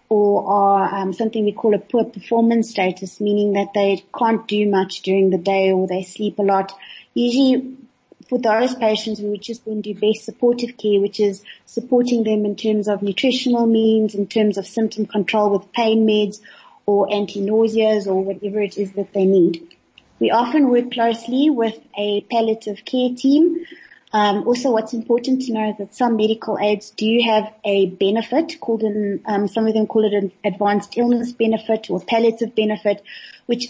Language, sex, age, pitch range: English, female, 30-49, 200-225 Hz